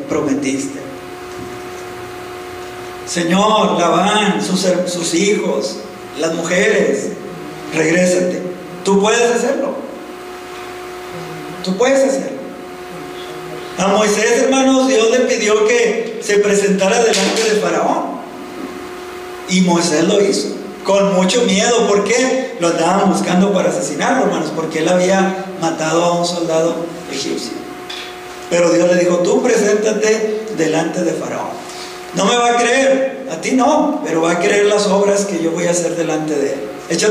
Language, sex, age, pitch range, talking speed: Spanish, male, 40-59, 175-225 Hz, 135 wpm